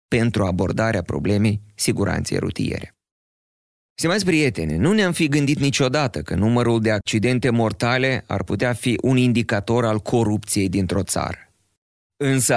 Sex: male